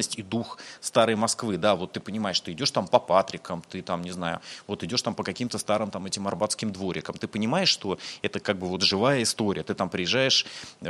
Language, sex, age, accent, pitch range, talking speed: Russian, male, 30-49, native, 90-110 Hz, 215 wpm